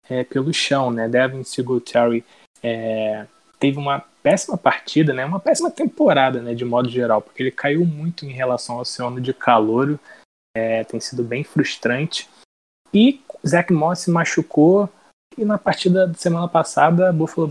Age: 20-39